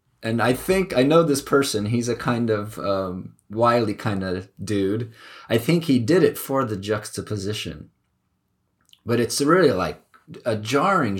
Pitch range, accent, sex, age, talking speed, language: 100-125 Hz, American, male, 30-49, 160 wpm, English